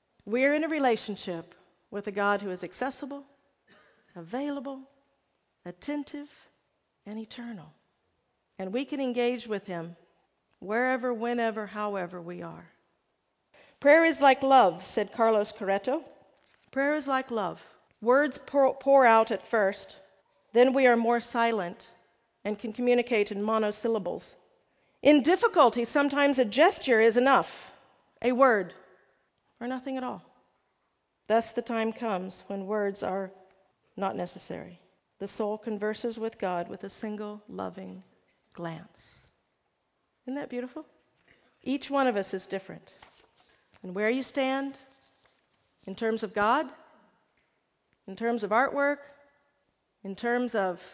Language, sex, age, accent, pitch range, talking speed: English, female, 50-69, American, 195-270 Hz, 125 wpm